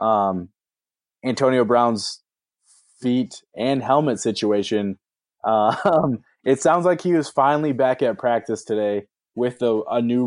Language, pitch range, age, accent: English, 105-125 Hz, 20-39, American